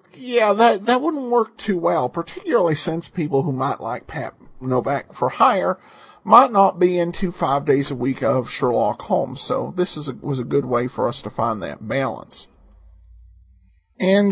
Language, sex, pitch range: English, male, 150-205 Hz